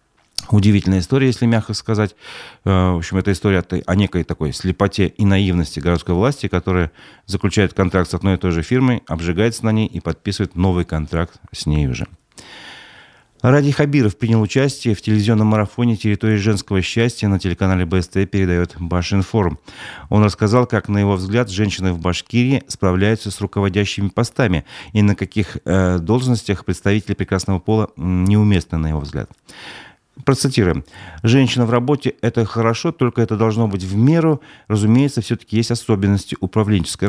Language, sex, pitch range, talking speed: Russian, male, 95-115 Hz, 150 wpm